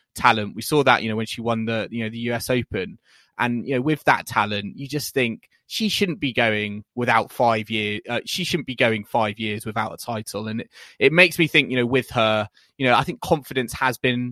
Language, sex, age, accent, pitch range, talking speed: English, male, 20-39, British, 115-130 Hz, 235 wpm